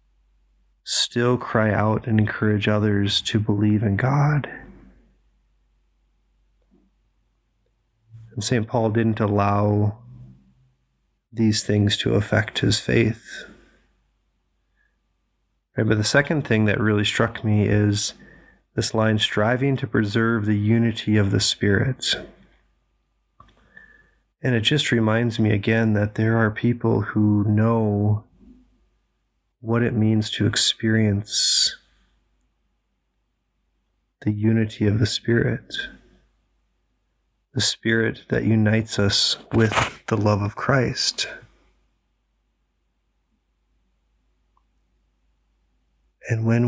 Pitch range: 105-115 Hz